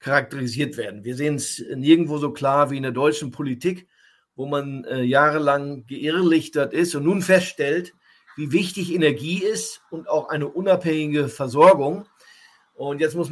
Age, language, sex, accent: 50-69, German, male, German